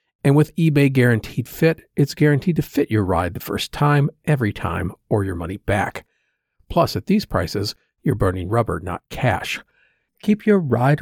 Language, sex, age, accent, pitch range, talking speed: English, male, 50-69, American, 110-150 Hz, 175 wpm